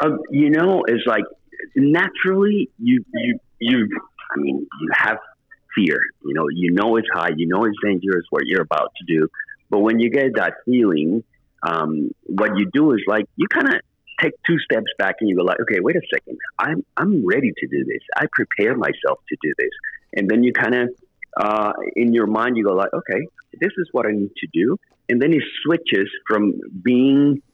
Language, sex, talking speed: English, male, 205 wpm